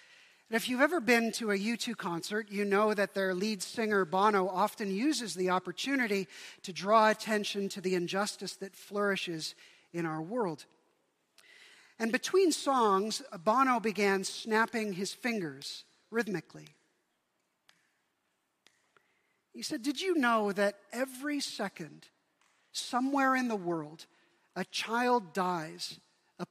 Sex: male